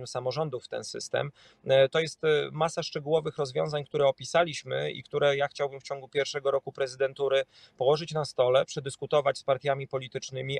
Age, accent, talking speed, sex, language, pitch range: 30-49, native, 155 wpm, male, Polish, 135-160 Hz